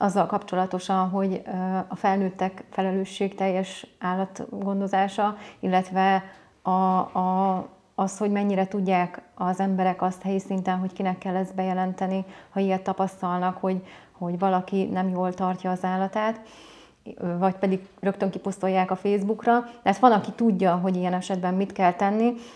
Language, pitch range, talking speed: Hungarian, 185-200 Hz, 135 wpm